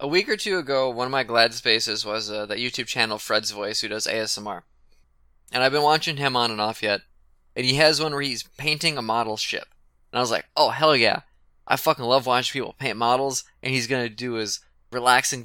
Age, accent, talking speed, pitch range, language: 20-39, American, 230 wpm, 110-145 Hz, English